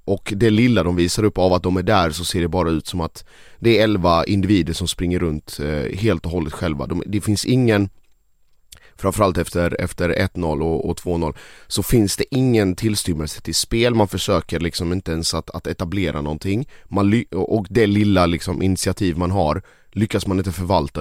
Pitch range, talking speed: 85-100 Hz, 195 wpm